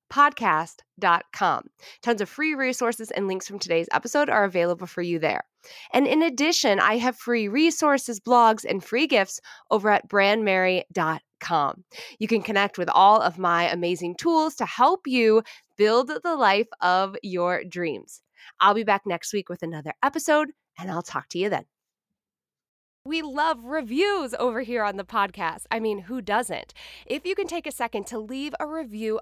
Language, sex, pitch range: English, female, 205-290 Hz